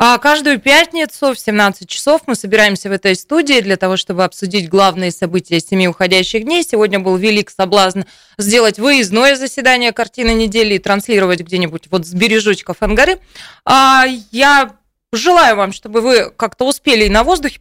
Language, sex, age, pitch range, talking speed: Russian, female, 20-39, 190-250 Hz, 155 wpm